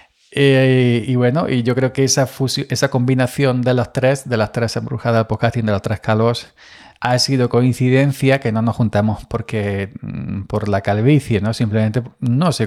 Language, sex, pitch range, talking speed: Spanish, male, 105-130 Hz, 190 wpm